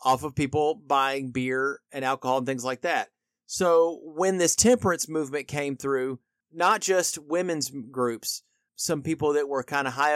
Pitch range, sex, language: 130-165 Hz, male, English